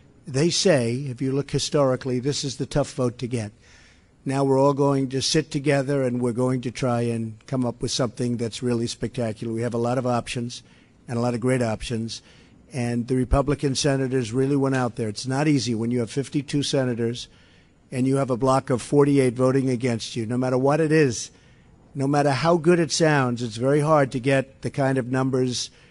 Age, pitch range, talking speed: 50-69, 120-140 Hz, 210 wpm